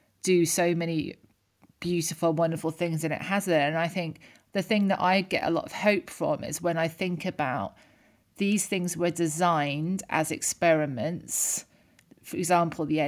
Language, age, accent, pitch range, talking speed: English, 30-49, British, 160-195 Hz, 170 wpm